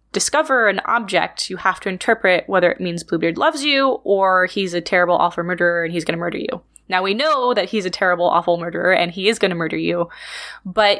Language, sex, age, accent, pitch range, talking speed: English, female, 20-39, American, 175-220 Hz, 230 wpm